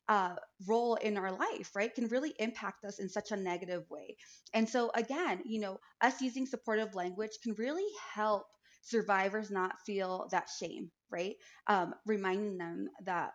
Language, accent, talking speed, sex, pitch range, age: English, American, 165 wpm, female, 185-230 Hz, 20-39